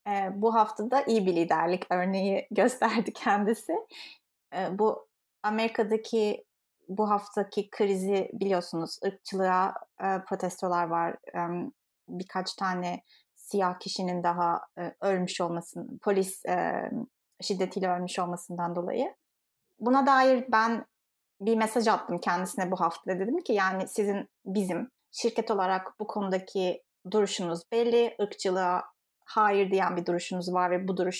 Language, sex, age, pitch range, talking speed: Turkish, female, 30-49, 185-250 Hz, 125 wpm